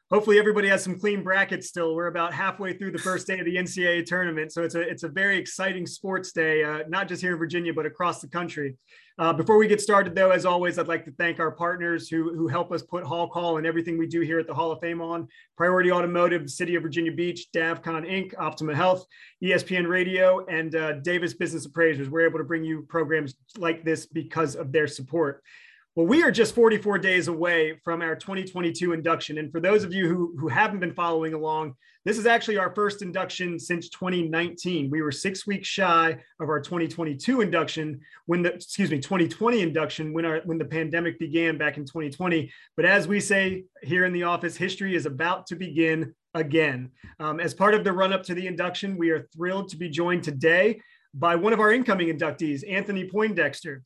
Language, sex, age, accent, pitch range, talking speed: English, male, 30-49, American, 160-185 Hz, 210 wpm